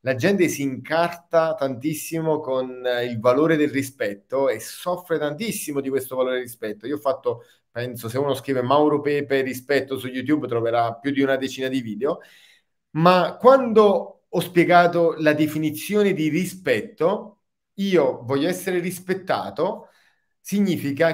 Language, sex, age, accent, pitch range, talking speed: Italian, male, 30-49, native, 135-195 Hz, 140 wpm